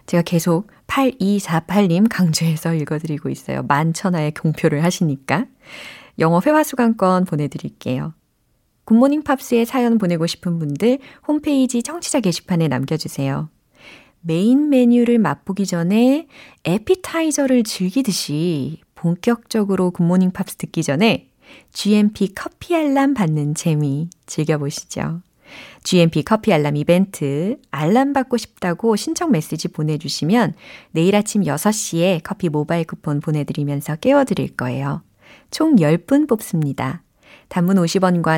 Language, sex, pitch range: Korean, female, 160-245 Hz